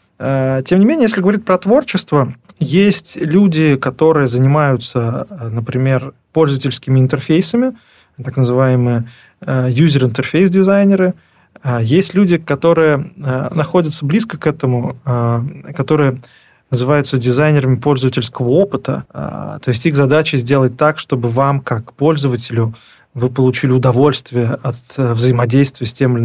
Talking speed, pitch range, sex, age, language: 105 wpm, 120-150 Hz, male, 20-39, Russian